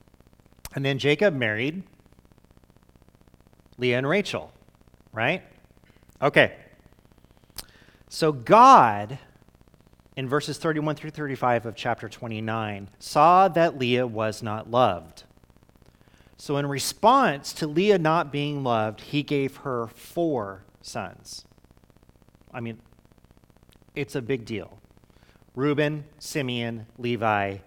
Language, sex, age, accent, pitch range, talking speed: English, male, 30-49, American, 100-150 Hz, 100 wpm